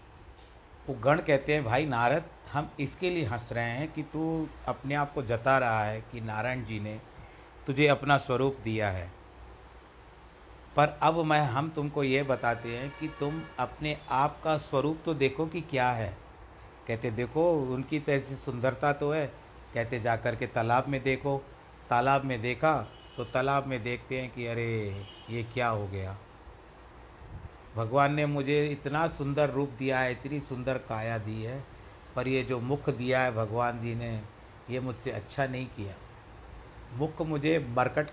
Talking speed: 165 wpm